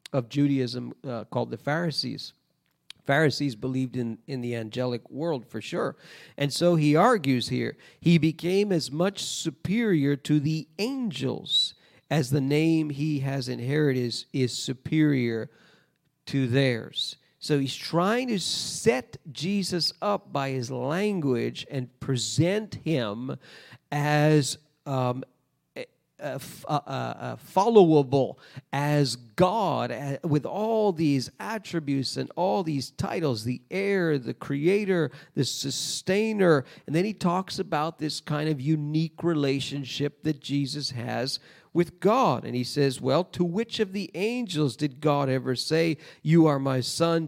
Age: 50-69